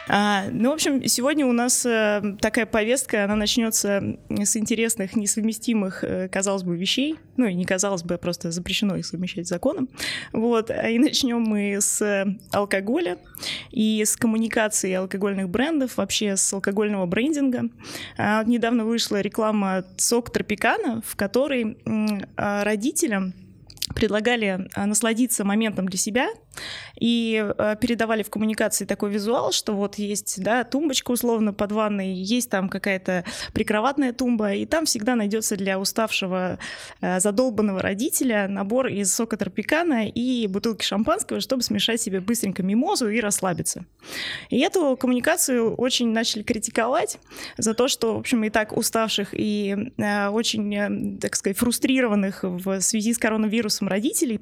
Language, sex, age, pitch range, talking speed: Russian, female, 20-39, 200-240 Hz, 130 wpm